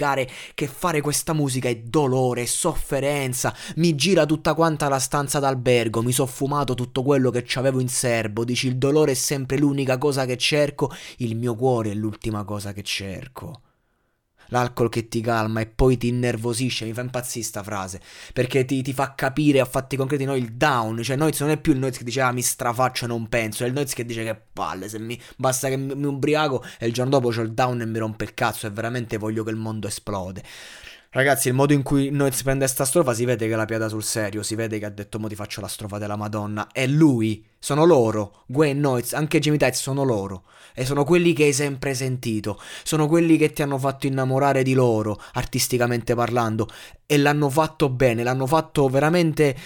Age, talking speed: 20-39, 215 wpm